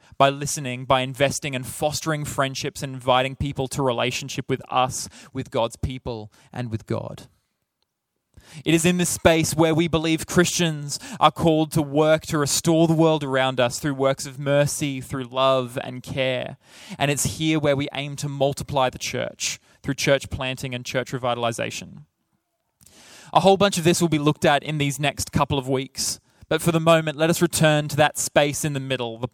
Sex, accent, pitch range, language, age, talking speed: male, Australian, 130-155 Hz, English, 20-39, 190 wpm